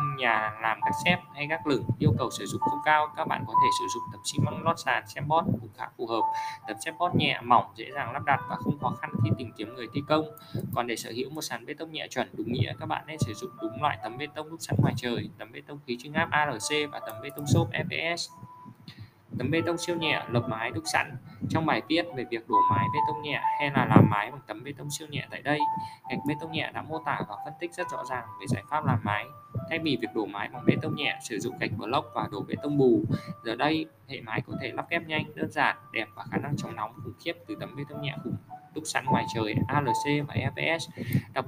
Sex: male